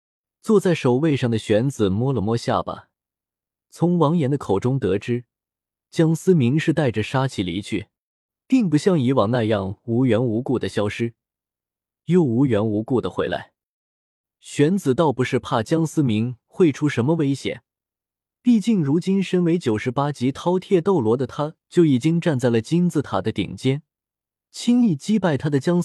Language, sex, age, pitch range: Chinese, male, 20-39, 115-165 Hz